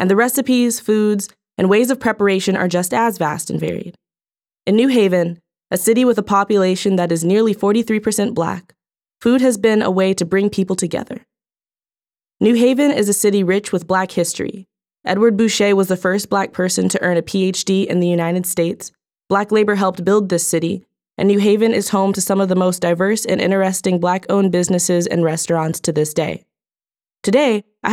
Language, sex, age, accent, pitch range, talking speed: English, female, 20-39, American, 180-215 Hz, 190 wpm